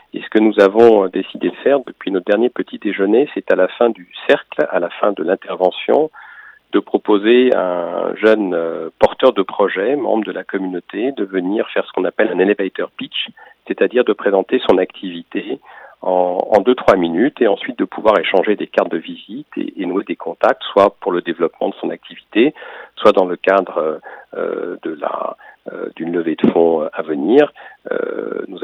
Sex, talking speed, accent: male, 190 wpm, French